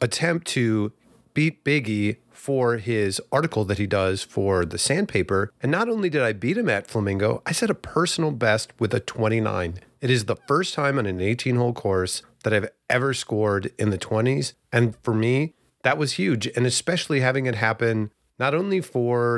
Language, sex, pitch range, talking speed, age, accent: English, male, 105-135 Hz, 185 wpm, 30-49, American